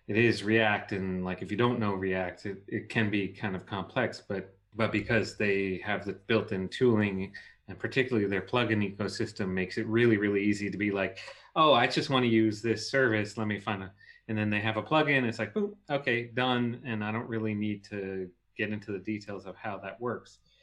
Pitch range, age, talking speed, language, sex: 95-115 Hz, 30-49, 220 wpm, English, male